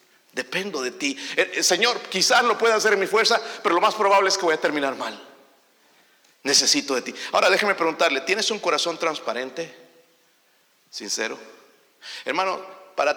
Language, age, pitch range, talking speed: Spanish, 50-69, 165-235 Hz, 155 wpm